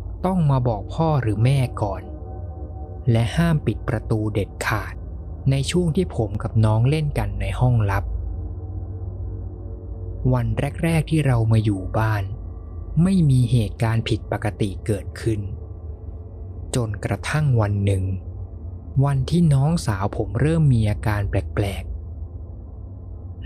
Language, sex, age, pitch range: Thai, male, 20-39, 95-125 Hz